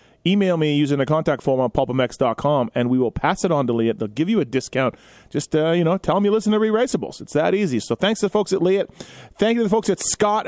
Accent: American